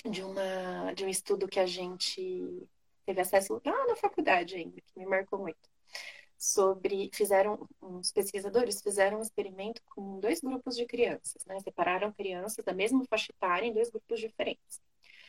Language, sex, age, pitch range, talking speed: Portuguese, female, 20-39, 195-285 Hz, 155 wpm